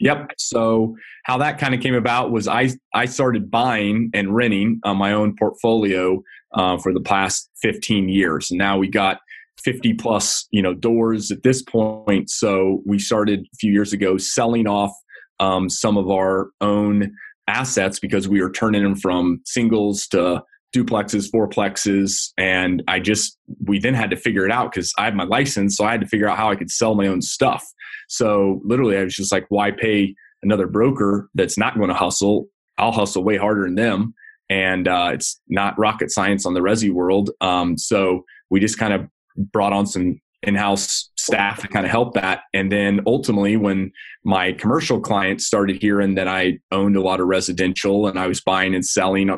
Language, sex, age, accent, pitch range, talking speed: English, male, 30-49, American, 95-105 Hz, 195 wpm